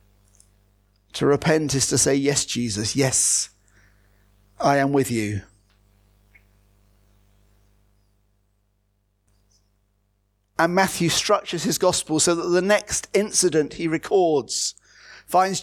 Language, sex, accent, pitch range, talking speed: English, male, British, 105-170 Hz, 95 wpm